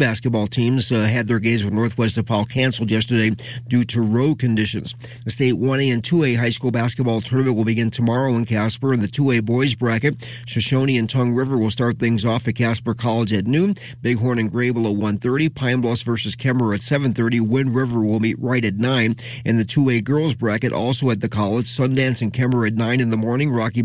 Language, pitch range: English, 115-130 Hz